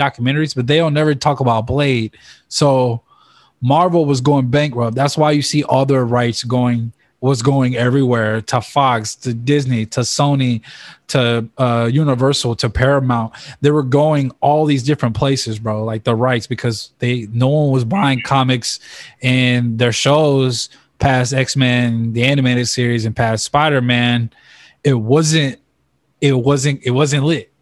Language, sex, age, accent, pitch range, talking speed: English, male, 20-39, American, 120-140 Hz, 150 wpm